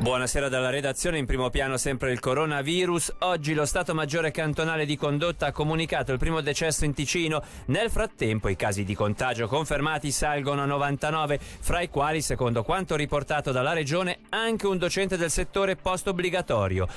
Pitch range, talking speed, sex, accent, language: 115-155 Hz, 170 wpm, male, native, Italian